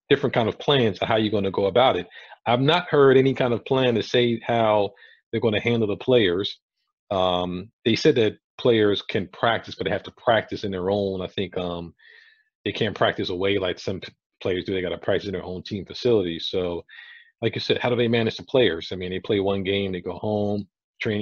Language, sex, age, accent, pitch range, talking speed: English, male, 40-59, American, 95-115 Hz, 235 wpm